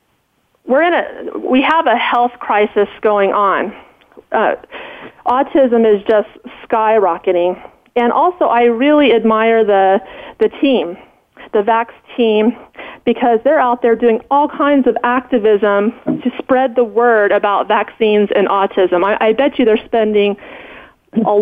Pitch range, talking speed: 215-245 Hz, 140 wpm